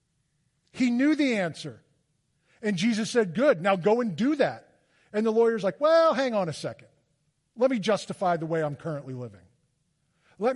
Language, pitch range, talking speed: English, 155-225 Hz, 175 wpm